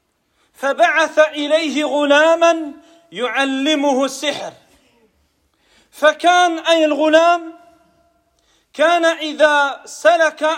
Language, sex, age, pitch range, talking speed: French, male, 40-59, 295-330 Hz, 60 wpm